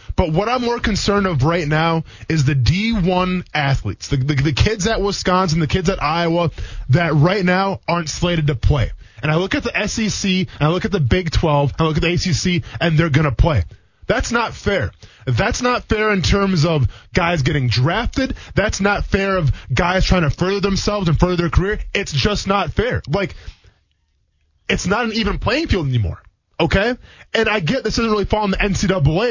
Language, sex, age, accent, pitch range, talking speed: English, male, 20-39, American, 135-200 Hz, 205 wpm